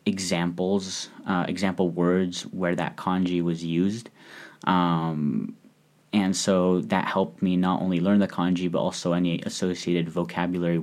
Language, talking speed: English, 140 wpm